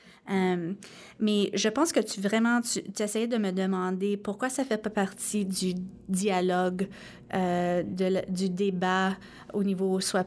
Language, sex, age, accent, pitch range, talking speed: English, female, 30-49, Canadian, 190-225 Hz, 160 wpm